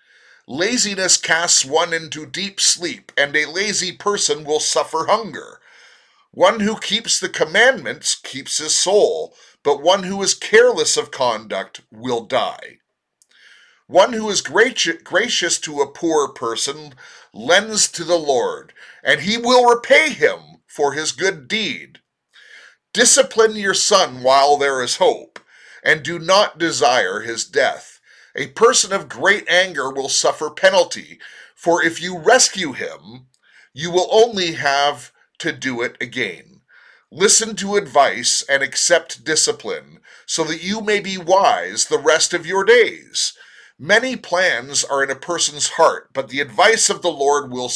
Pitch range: 150-215 Hz